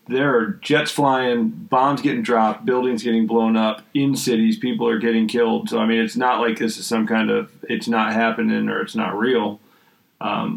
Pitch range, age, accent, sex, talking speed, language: 110-130 Hz, 30-49, American, male, 205 wpm, English